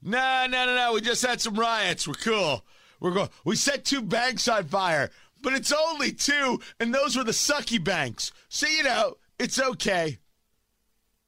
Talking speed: 180 wpm